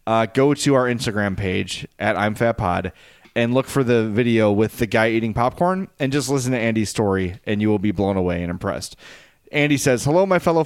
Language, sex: English, male